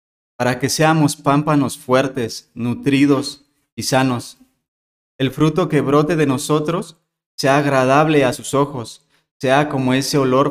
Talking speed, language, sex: 130 wpm, Spanish, male